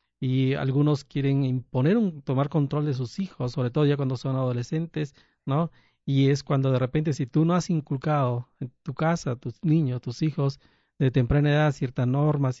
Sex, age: male, 40-59